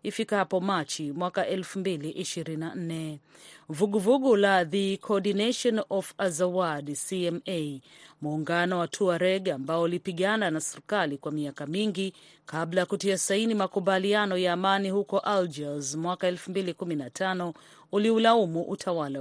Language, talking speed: Swahili, 110 wpm